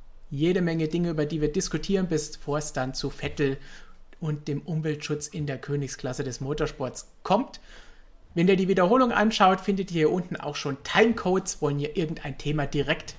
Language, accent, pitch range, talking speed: German, German, 145-185 Hz, 175 wpm